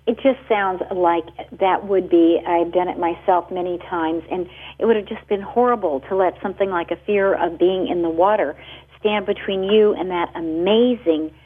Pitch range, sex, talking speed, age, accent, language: 170-205 Hz, female, 195 wpm, 50-69, American, English